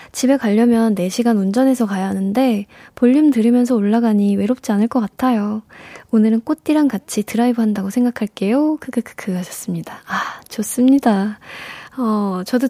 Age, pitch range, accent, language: 20-39, 200-260 Hz, native, Korean